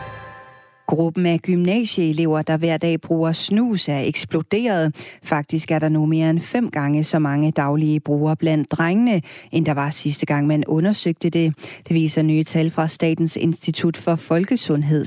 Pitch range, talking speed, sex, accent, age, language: 150-170 Hz, 165 wpm, female, native, 30-49, Danish